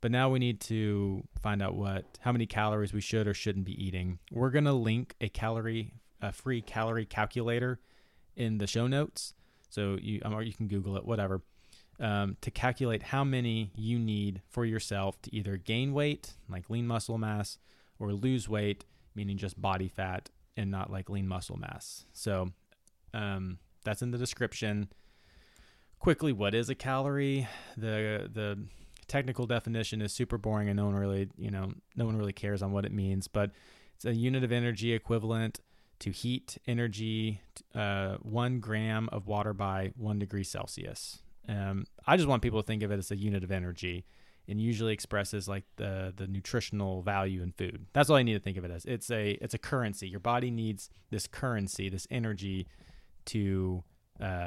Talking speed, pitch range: 185 wpm, 95-115 Hz